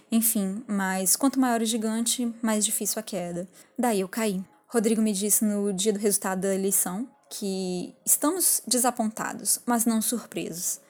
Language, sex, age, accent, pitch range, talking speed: Portuguese, female, 10-29, Brazilian, 195-240 Hz, 155 wpm